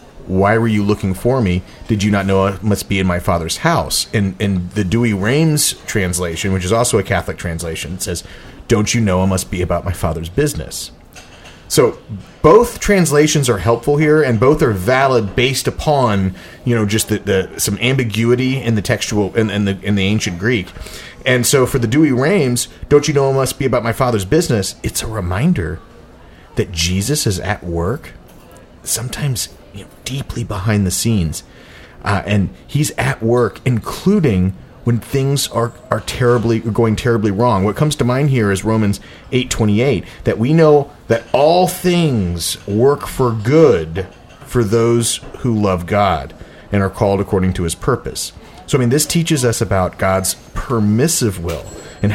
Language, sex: English, male